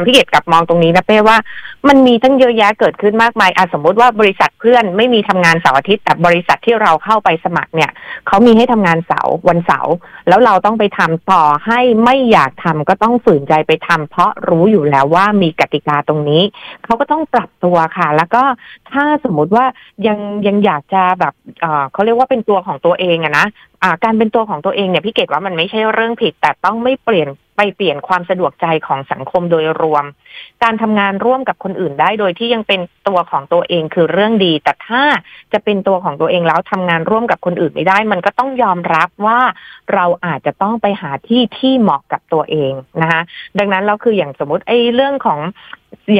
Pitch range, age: 170-230 Hz, 30-49